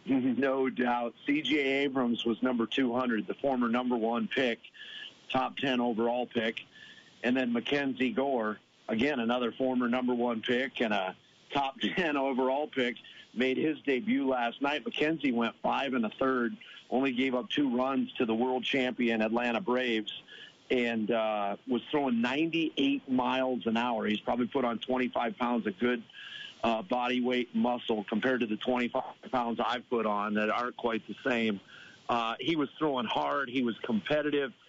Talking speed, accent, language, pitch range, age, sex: 165 wpm, American, English, 120-145 Hz, 50-69, male